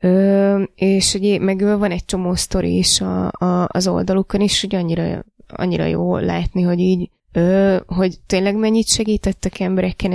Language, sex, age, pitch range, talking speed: Hungarian, female, 20-39, 180-195 Hz, 160 wpm